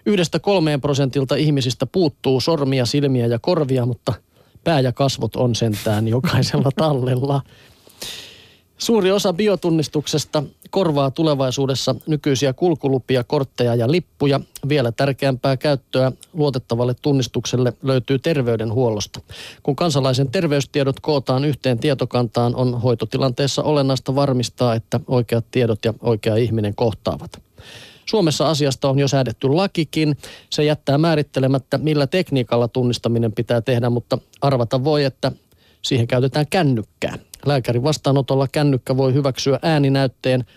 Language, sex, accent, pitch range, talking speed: Finnish, male, native, 120-145 Hz, 115 wpm